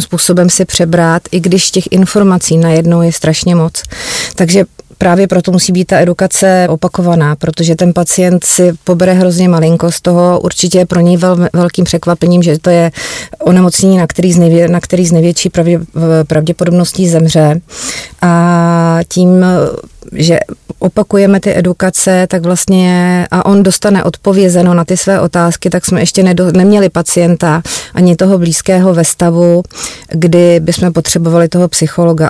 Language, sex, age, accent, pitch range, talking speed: Czech, female, 30-49, native, 170-180 Hz, 135 wpm